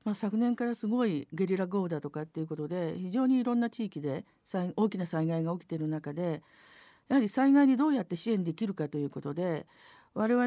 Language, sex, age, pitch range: Japanese, female, 50-69, 160-225 Hz